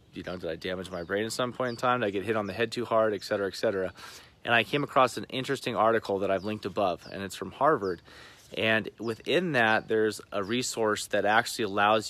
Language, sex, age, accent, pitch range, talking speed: English, male, 30-49, American, 105-120 Hz, 245 wpm